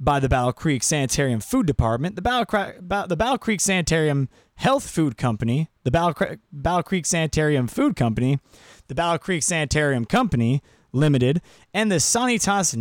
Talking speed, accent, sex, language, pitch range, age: 145 wpm, American, male, English, 125-170 Hz, 20-39